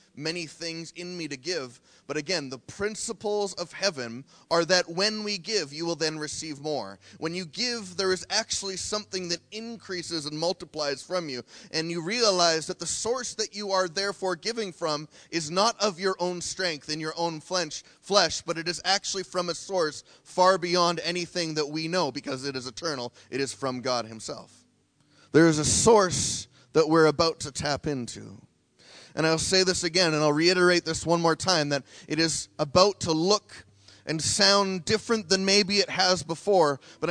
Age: 20-39